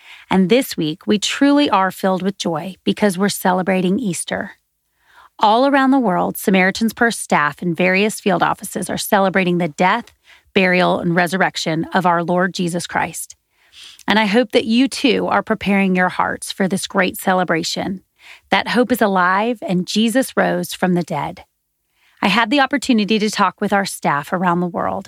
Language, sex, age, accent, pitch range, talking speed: English, female, 30-49, American, 180-220 Hz, 170 wpm